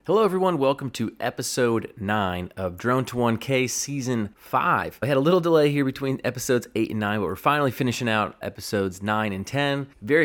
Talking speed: 195 wpm